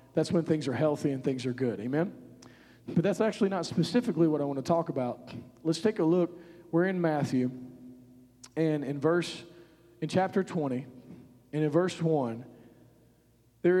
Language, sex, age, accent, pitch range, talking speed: English, male, 40-59, American, 135-175 Hz, 170 wpm